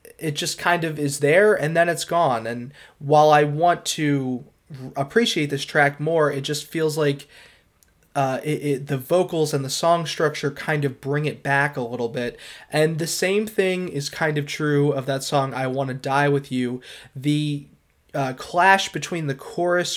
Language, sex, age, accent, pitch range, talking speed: English, male, 20-39, American, 135-160 Hz, 185 wpm